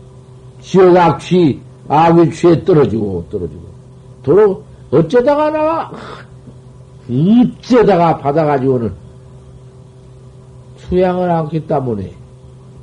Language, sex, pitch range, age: Korean, male, 130-160 Hz, 50-69